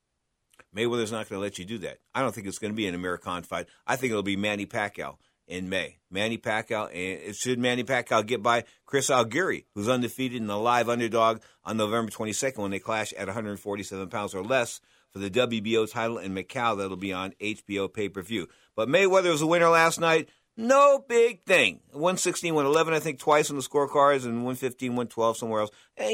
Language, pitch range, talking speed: English, 110-165 Hz, 200 wpm